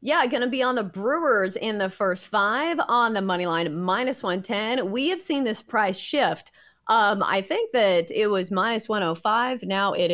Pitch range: 190-250 Hz